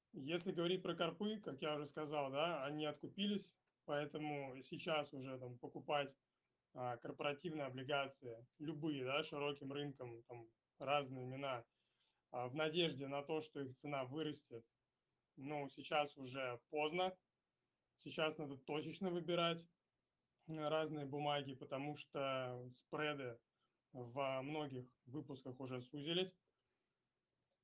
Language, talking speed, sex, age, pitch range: Russian, 110 wpm, male, 20-39, 135-160 Hz